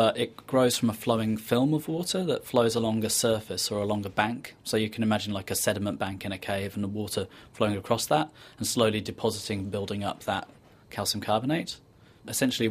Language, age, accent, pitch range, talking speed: English, 20-39, British, 105-120 Hz, 210 wpm